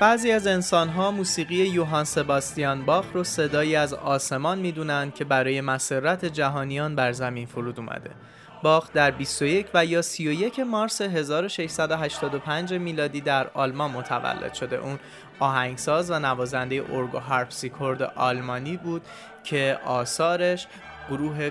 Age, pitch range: 20-39, 130-165 Hz